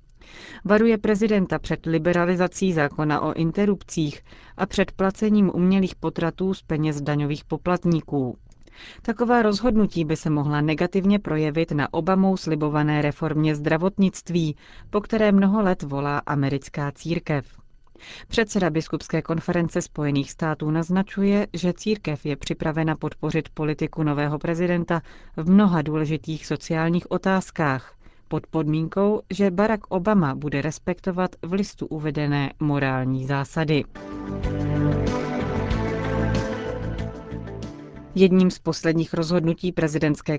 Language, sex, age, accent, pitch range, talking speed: Czech, female, 40-59, native, 150-180 Hz, 105 wpm